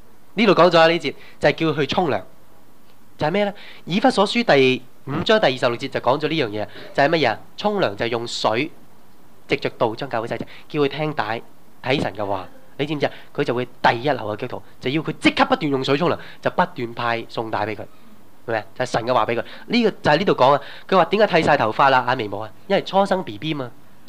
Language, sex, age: Chinese, male, 20-39